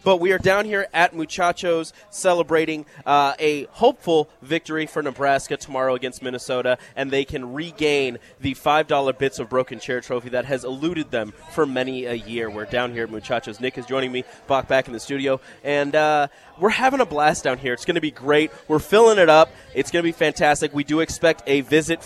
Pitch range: 130-165 Hz